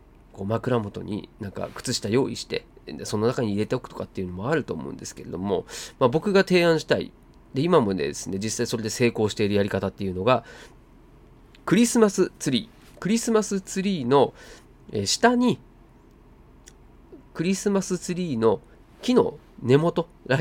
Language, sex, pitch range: Japanese, male, 110-180 Hz